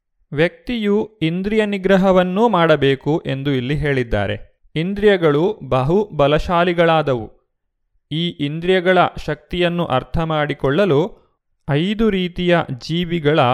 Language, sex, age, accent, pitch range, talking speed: Kannada, male, 30-49, native, 135-175 Hz, 70 wpm